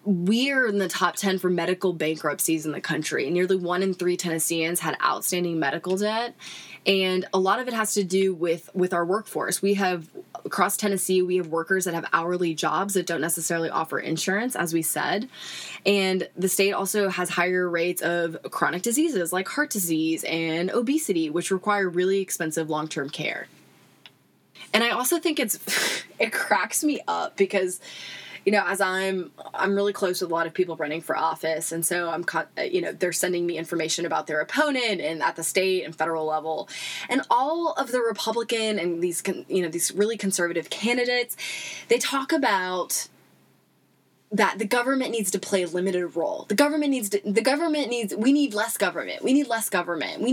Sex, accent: female, American